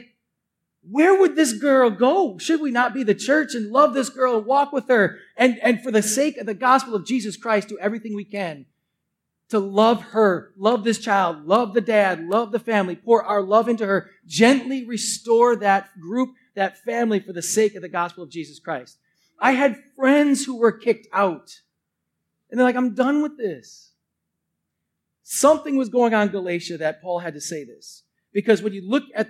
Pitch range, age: 180-235 Hz, 30-49